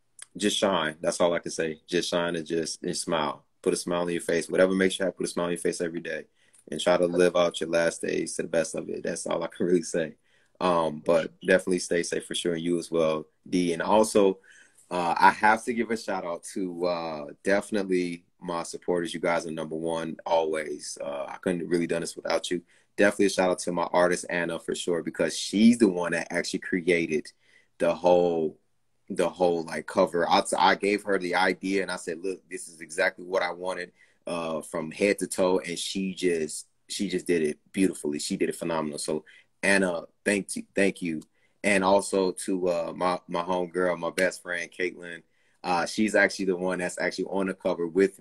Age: 20-39